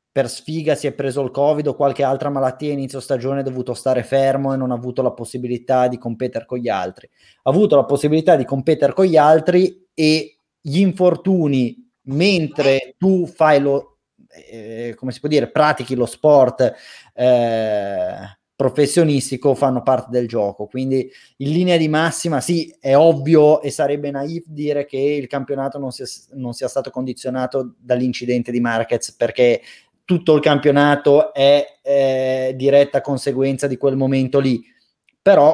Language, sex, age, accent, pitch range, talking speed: Italian, male, 20-39, native, 125-155 Hz, 160 wpm